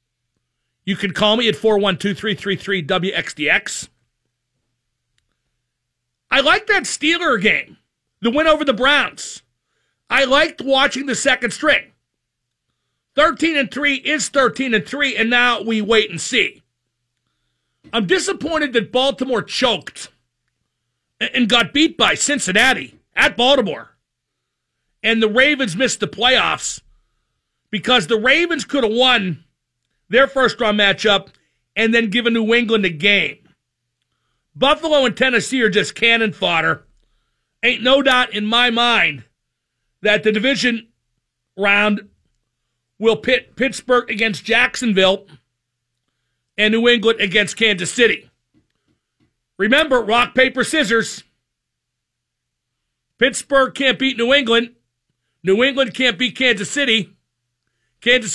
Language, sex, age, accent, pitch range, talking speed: English, male, 50-69, American, 190-260 Hz, 115 wpm